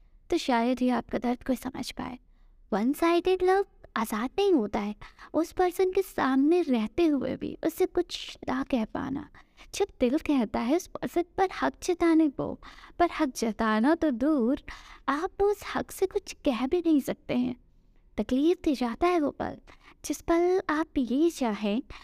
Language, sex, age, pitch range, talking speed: Hindi, female, 20-39, 255-340 Hz, 170 wpm